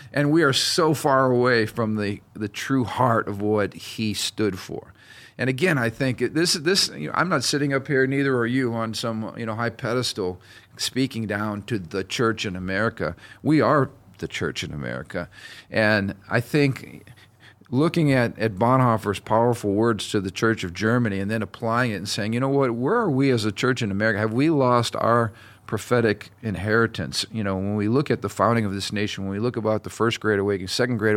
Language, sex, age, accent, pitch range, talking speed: English, male, 50-69, American, 105-125 Hz, 210 wpm